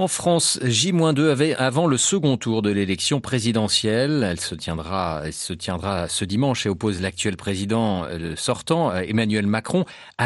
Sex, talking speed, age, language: male, 160 wpm, 40-59, French